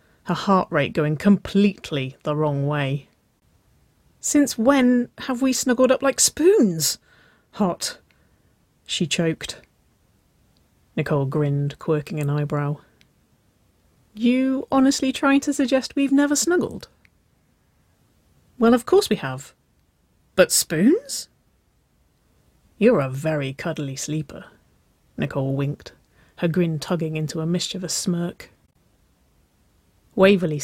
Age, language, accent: 40-59, English, British